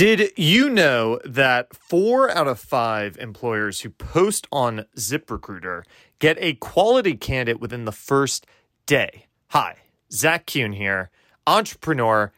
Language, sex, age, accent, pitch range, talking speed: English, male, 30-49, American, 110-155 Hz, 125 wpm